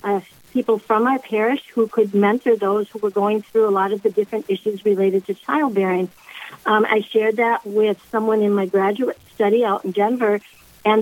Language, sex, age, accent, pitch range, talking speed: English, female, 60-79, American, 195-230 Hz, 195 wpm